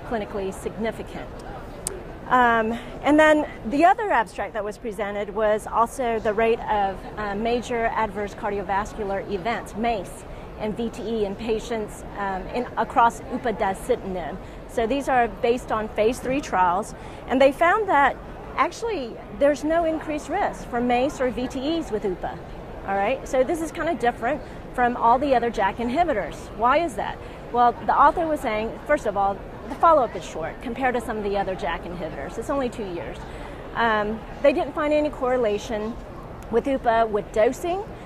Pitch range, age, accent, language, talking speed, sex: 210-265 Hz, 40-59, American, English, 165 wpm, female